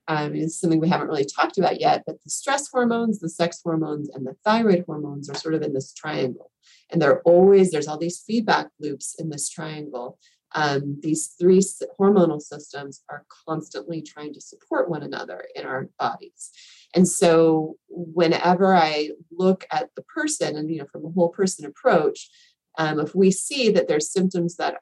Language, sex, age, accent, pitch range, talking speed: English, female, 30-49, American, 150-190 Hz, 185 wpm